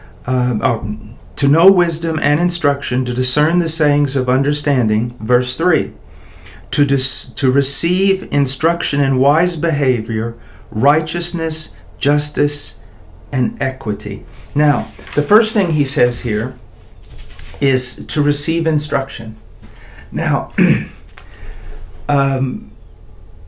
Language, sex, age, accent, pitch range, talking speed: English, male, 50-69, American, 110-145 Hz, 100 wpm